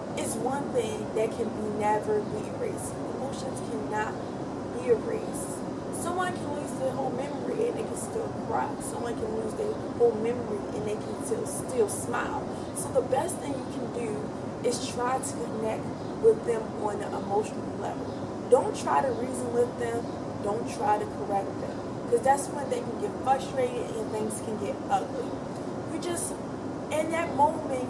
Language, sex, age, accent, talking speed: English, female, 20-39, American, 175 wpm